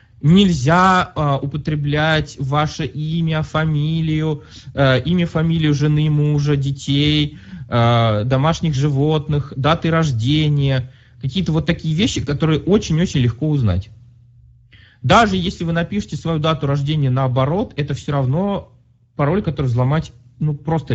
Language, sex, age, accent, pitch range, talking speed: Russian, male, 20-39, native, 120-170 Hz, 110 wpm